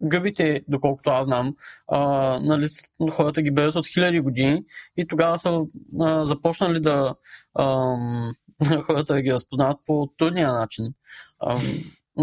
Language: Bulgarian